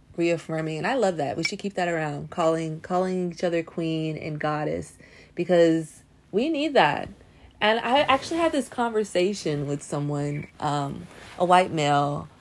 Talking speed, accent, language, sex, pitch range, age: 160 wpm, American, English, female, 150-185 Hz, 20-39